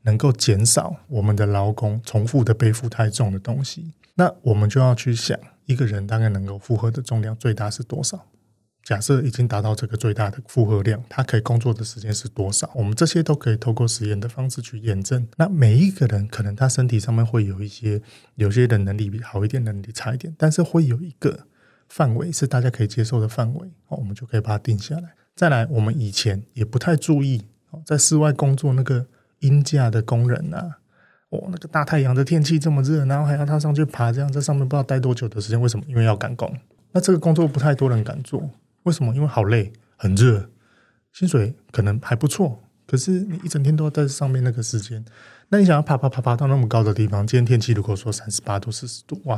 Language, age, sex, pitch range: Chinese, 20-39, male, 110-145 Hz